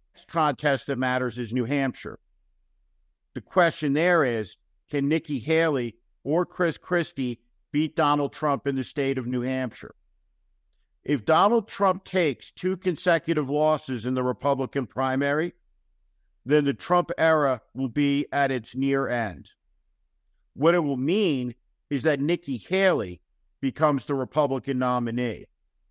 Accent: American